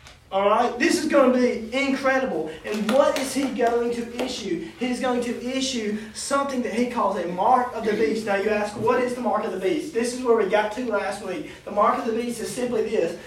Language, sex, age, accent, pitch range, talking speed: English, male, 20-39, American, 205-250 Hz, 250 wpm